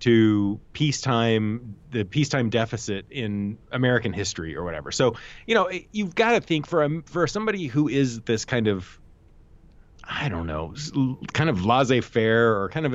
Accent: American